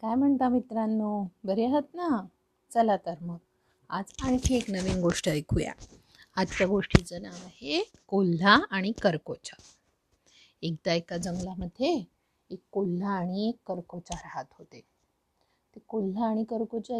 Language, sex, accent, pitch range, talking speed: Marathi, female, native, 180-230 Hz, 125 wpm